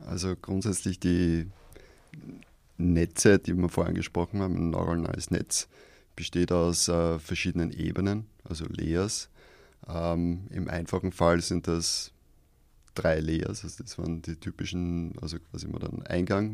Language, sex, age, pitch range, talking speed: German, male, 30-49, 85-90 Hz, 135 wpm